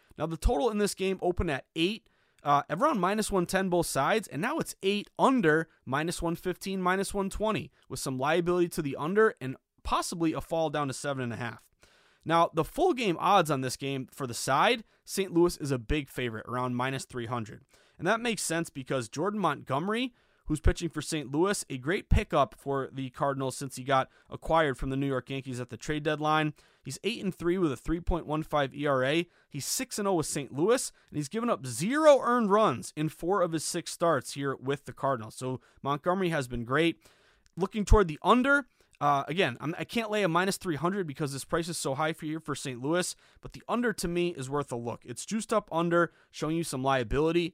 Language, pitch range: English, 135-185 Hz